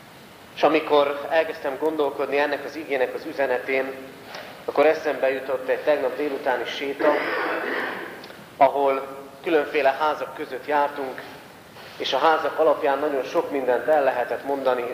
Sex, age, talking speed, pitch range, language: male, 40-59, 125 wpm, 125-150 Hz, Hungarian